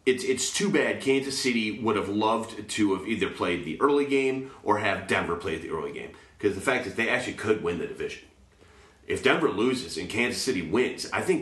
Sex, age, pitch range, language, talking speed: male, 30-49, 95-125 Hz, English, 220 wpm